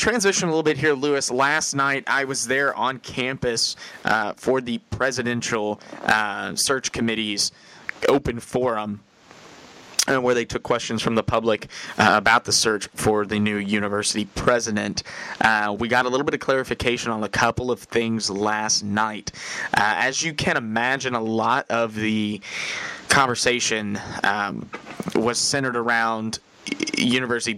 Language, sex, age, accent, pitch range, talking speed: English, male, 20-39, American, 105-125 Hz, 150 wpm